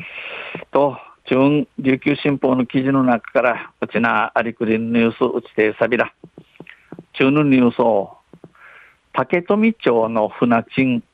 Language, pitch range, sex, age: Japanese, 115-145 Hz, male, 50-69